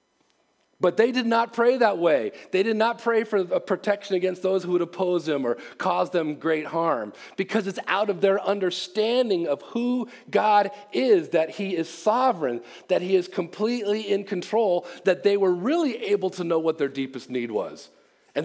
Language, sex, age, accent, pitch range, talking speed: English, male, 40-59, American, 135-200 Hz, 185 wpm